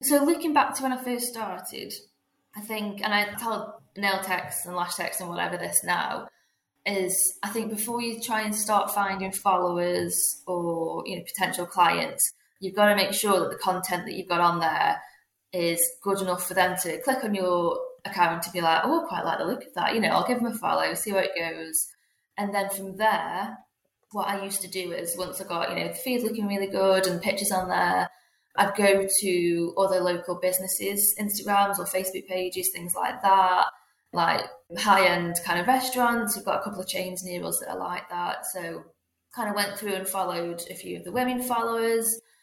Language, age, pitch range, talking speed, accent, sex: English, 10-29, 180-220 Hz, 210 wpm, British, female